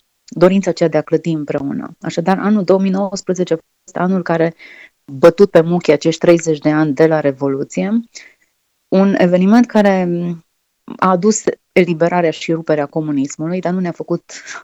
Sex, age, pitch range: female, 30-49, 155-180 Hz